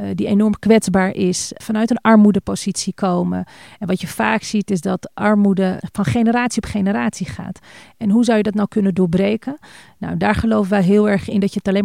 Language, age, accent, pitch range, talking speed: Dutch, 40-59, Dutch, 185-215 Hz, 205 wpm